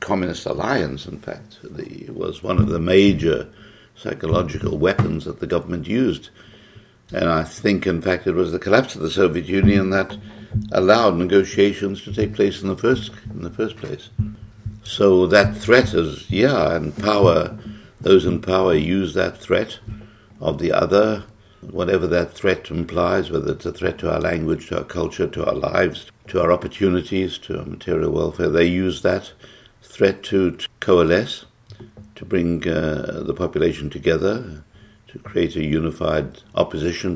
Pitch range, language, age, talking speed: 85-105 Hz, English, 60-79, 160 wpm